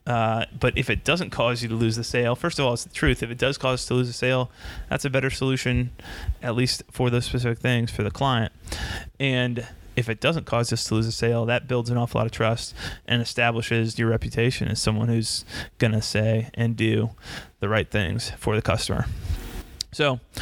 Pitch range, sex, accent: 110-130 Hz, male, American